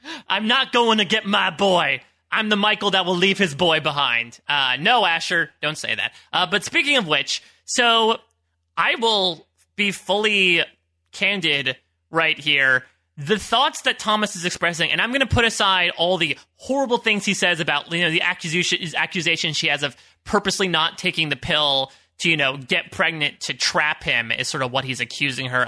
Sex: male